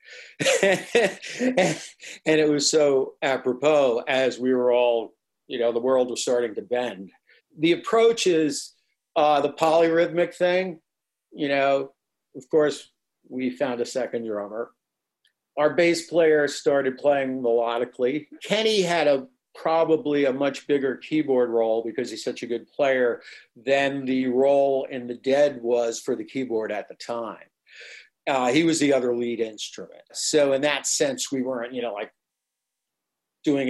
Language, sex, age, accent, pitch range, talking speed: English, male, 50-69, American, 125-155 Hz, 150 wpm